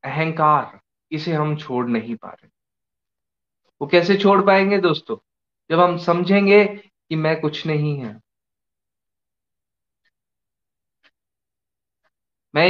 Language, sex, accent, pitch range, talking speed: Hindi, male, native, 135-170 Hz, 100 wpm